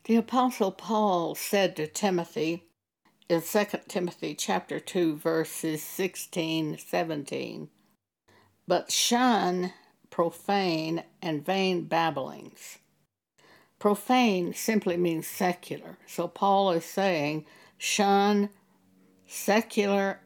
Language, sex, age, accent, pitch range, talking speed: English, female, 60-79, American, 165-200 Hz, 85 wpm